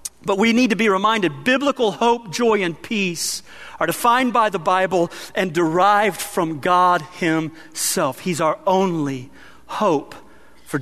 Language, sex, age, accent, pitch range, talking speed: English, male, 40-59, American, 185-250 Hz, 145 wpm